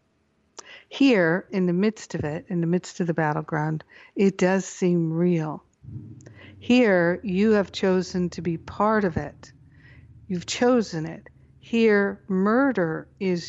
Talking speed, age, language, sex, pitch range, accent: 140 wpm, 60-79, English, female, 160-190 Hz, American